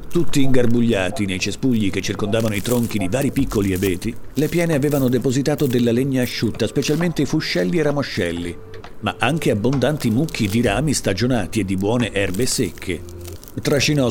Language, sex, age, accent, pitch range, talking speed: Italian, male, 50-69, native, 100-130 Hz, 155 wpm